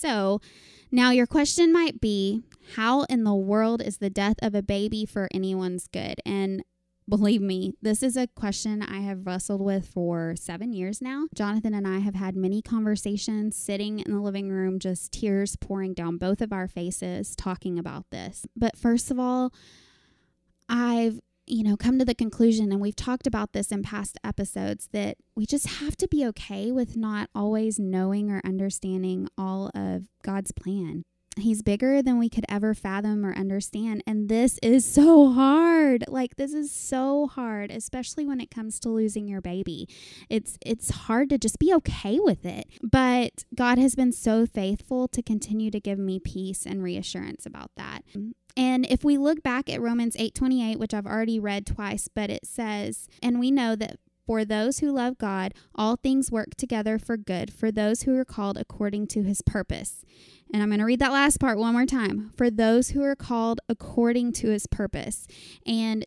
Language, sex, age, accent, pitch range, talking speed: English, female, 10-29, American, 195-245 Hz, 190 wpm